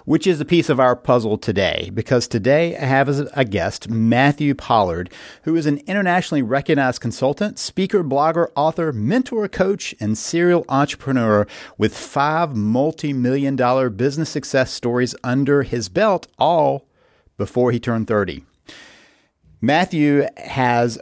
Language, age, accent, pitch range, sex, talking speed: English, 50-69, American, 115-150 Hz, male, 135 wpm